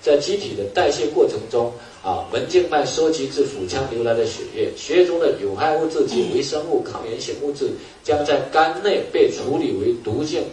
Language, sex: Chinese, male